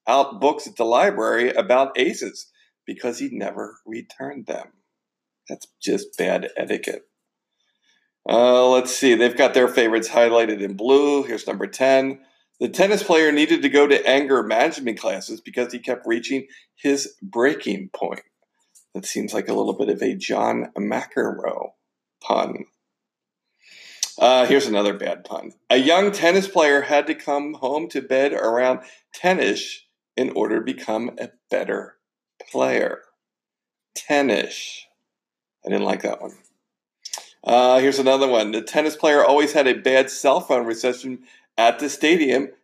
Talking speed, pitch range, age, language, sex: 145 wpm, 125-160 Hz, 50-69, English, male